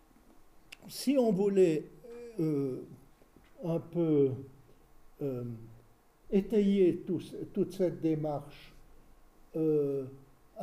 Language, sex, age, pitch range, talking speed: French, male, 60-79, 145-195 Hz, 70 wpm